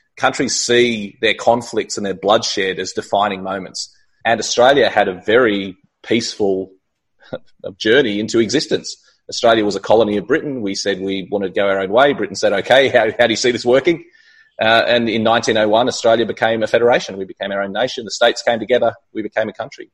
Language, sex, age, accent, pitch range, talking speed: English, male, 30-49, Australian, 100-130 Hz, 195 wpm